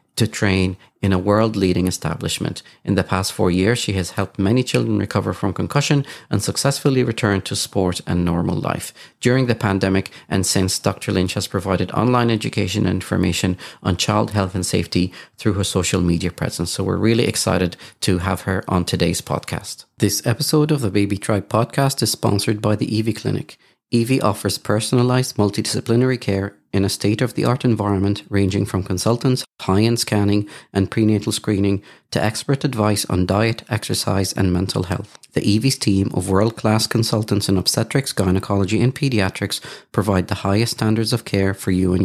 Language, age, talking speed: English, 40-59, 170 wpm